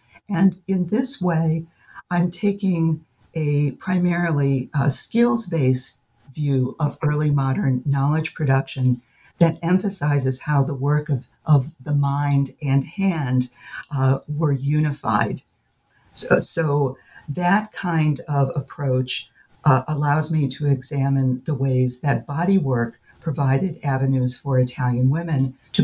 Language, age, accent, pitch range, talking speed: English, 60-79, American, 130-160 Hz, 120 wpm